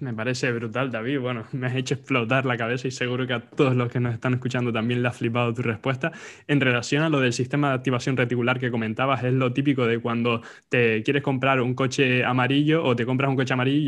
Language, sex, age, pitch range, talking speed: Spanish, male, 20-39, 120-140 Hz, 240 wpm